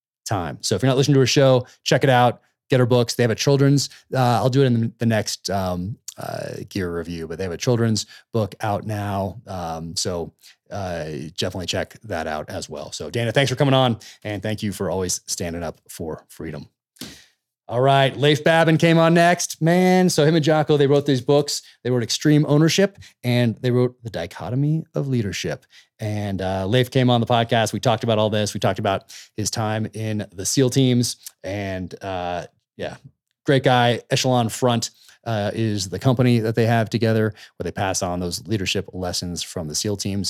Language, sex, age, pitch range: English, male, 30-49, 95-130 Hz